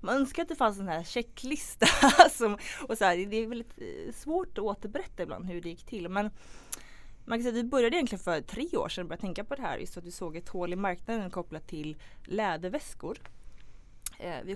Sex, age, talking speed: female, 20-39, 220 wpm